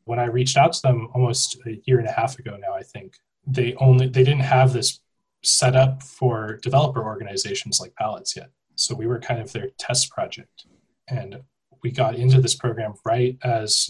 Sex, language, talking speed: male, English, 200 wpm